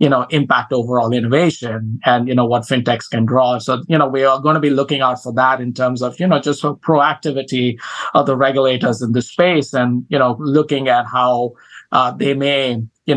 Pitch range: 125-145 Hz